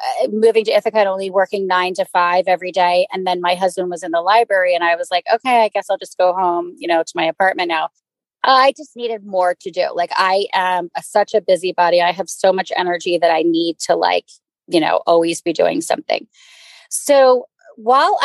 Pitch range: 180-225 Hz